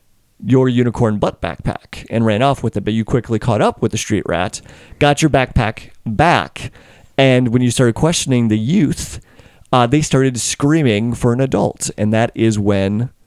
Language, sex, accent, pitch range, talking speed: English, male, American, 105-135 Hz, 180 wpm